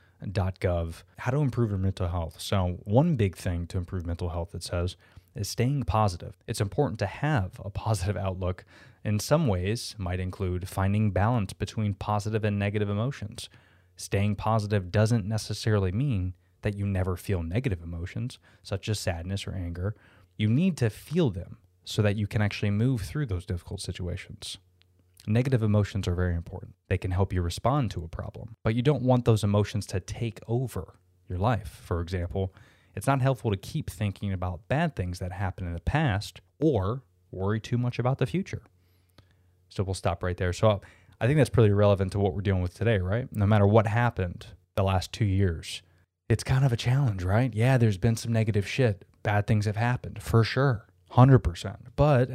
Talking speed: 190 wpm